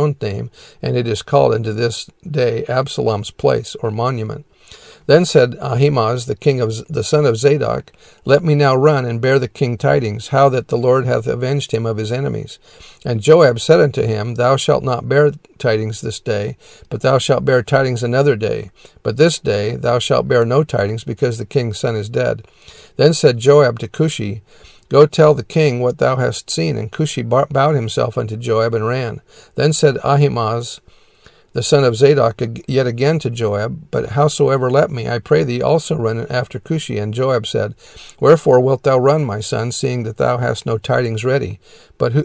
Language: English